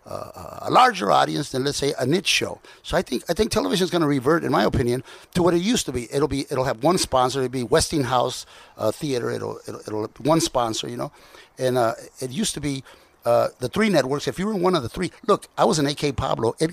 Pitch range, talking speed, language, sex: 130-165 Hz, 280 wpm, English, male